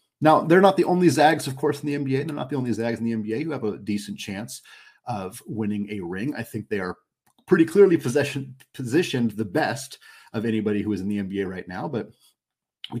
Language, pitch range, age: English, 100-120 Hz, 30-49